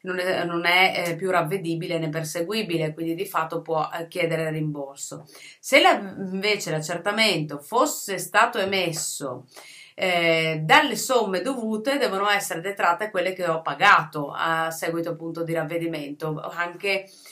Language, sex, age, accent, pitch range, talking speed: Italian, female, 30-49, native, 160-195 Hz, 140 wpm